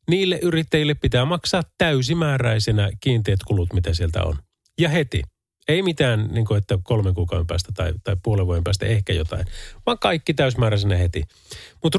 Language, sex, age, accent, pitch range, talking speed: Finnish, male, 30-49, native, 100-145 Hz, 155 wpm